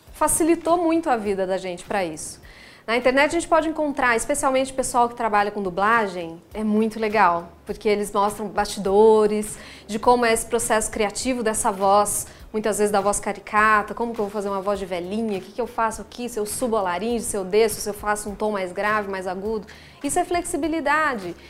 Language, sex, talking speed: Portuguese, female, 205 wpm